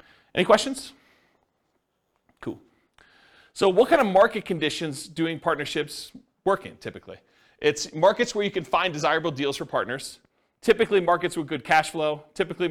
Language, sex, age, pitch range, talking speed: English, male, 40-59, 145-195 Hz, 145 wpm